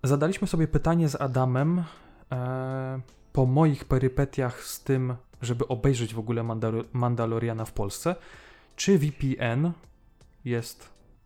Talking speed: 110 wpm